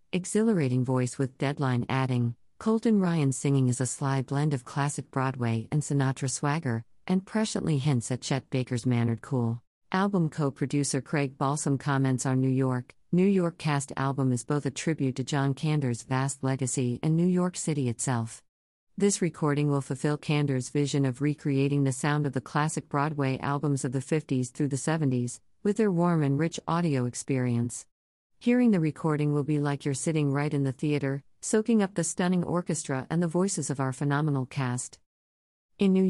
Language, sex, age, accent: English, female, 50-69, American